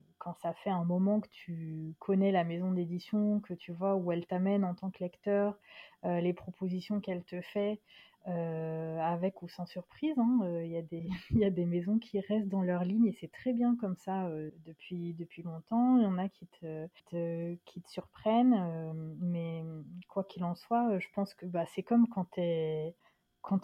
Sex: female